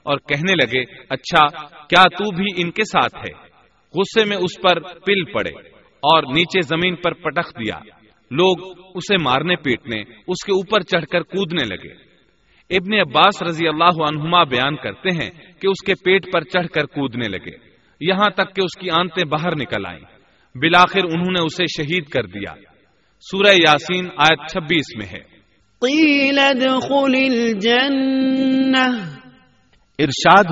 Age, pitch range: 40-59, 145-185 Hz